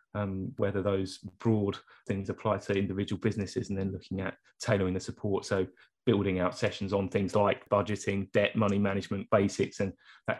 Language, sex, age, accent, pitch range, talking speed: English, male, 30-49, British, 105-120 Hz, 175 wpm